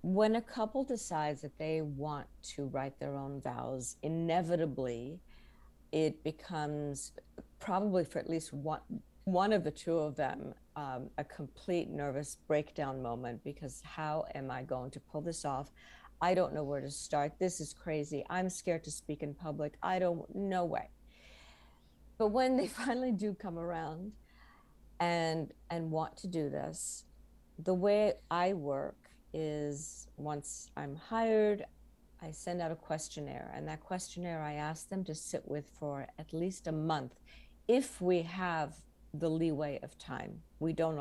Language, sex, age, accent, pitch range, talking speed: English, female, 50-69, American, 145-180 Hz, 160 wpm